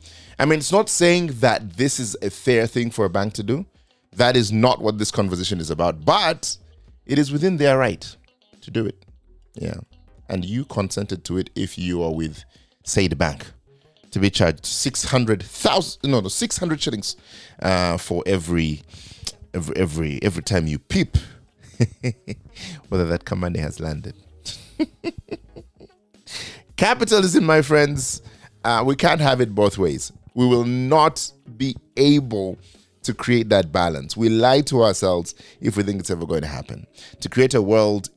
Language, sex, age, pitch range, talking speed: English, male, 30-49, 95-135 Hz, 160 wpm